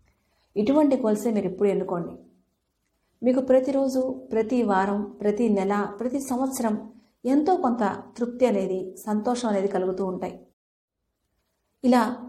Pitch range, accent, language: 200-245 Hz, native, Telugu